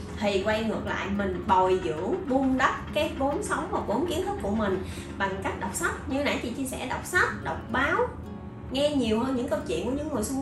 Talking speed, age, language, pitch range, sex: 235 wpm, 20-39, Vietnamese, 200-290 Hz, female